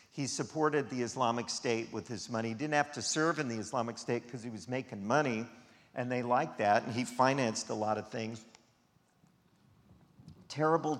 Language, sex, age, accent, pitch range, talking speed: English, male, 50-69, American, 110-130 Hz, 185 wpm